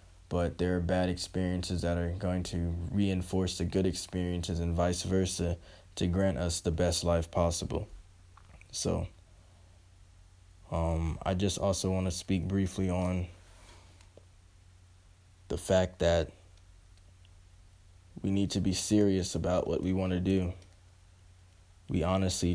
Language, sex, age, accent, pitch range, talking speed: English, male, 20-39, American, 90-95 Hz, 125 wpm